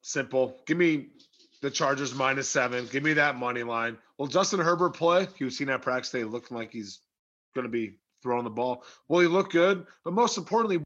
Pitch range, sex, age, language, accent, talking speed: 120-155 Hz, male, 30-49, English, American, 205 wpm